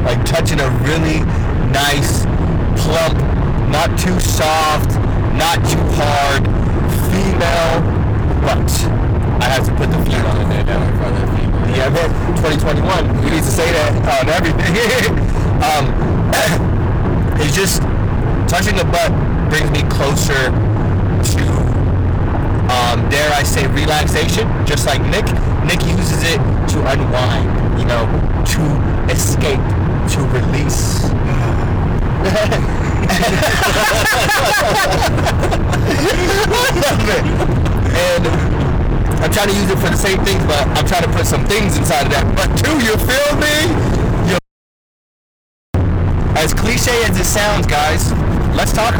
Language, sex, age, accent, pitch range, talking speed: English, male, 30-49, American, 95-125 Hz, 120 wpm